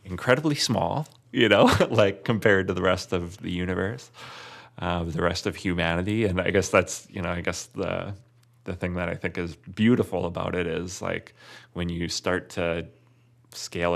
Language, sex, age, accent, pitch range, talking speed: English, male, 30-49, American, 85-95 Hz, 180 wpm